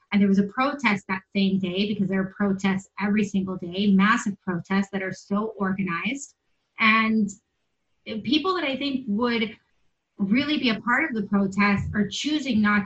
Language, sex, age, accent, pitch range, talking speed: English, female, 30-49, American, 195-225 Hz, 175 wpm